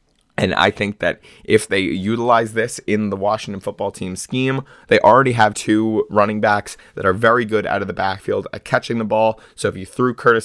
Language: English